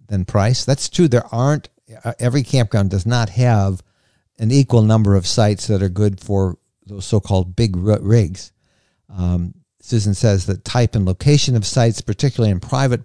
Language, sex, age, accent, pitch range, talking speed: English, male, 50-69, American, 100-130 Hz, 170 wpm